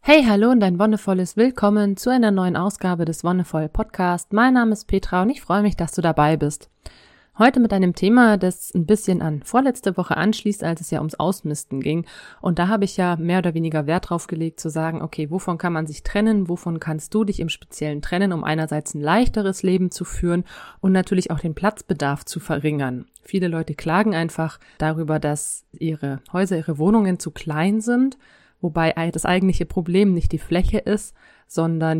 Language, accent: German, German